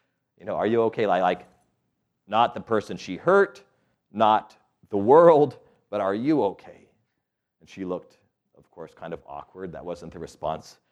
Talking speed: 165 wpm